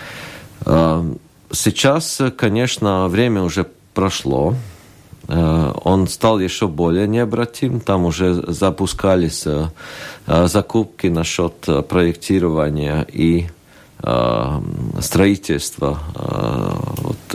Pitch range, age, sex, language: 85-115 Hz, 50-69, male, Russian